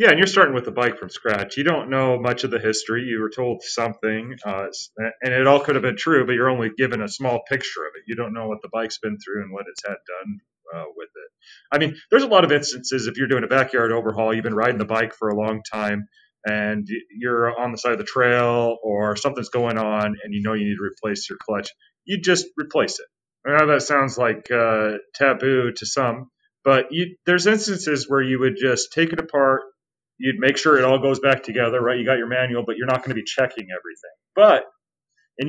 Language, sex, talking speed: English, male, 240 wpm